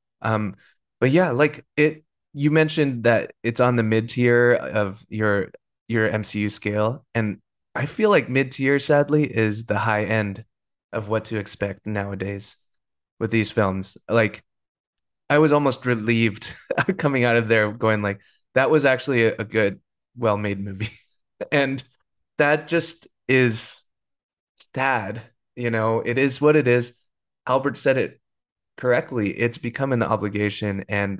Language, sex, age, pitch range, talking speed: English, male, 20-39, 105-135 Hz, 150 wpm